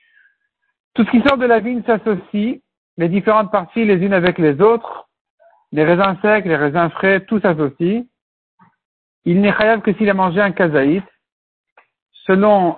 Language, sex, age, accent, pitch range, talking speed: French, male, 60-79, French, 165-205 Hz, 160 wpm